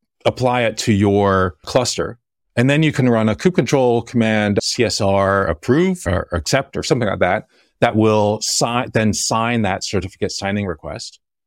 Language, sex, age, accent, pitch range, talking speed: English, male, 30-49, American, 105-140 Hz, 160 wpm